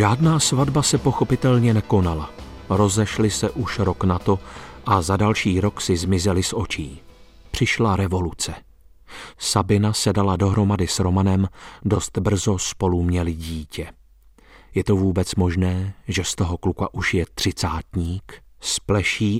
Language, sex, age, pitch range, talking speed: Czech, male, 40-59, 85-105 Hz, 135 wpm